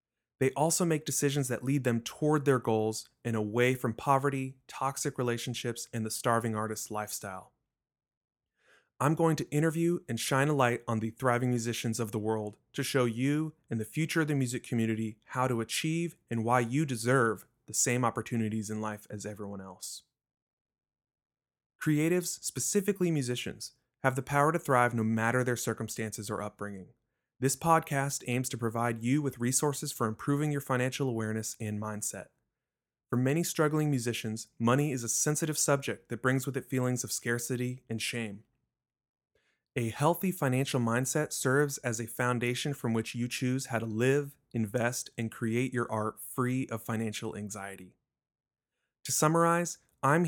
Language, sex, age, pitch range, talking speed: English, male, 30-49, 115-140 Hz, 160 wpm